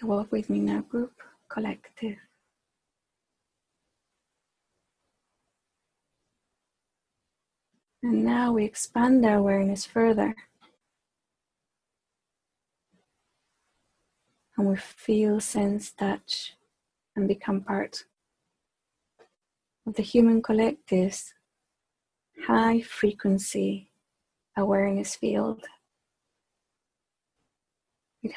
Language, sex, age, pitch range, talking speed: English, female, 30-49, 195-220 Hz, 65 wpm